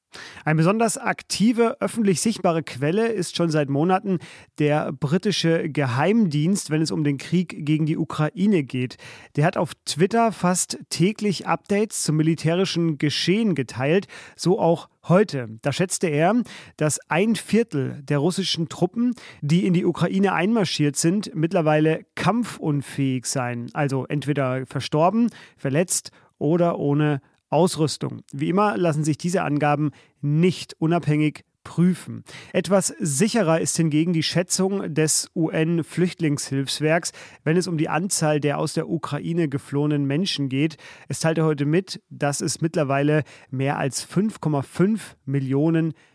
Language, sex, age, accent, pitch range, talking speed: German, male, 40-59, German, 145-180 Hz, 130 wpm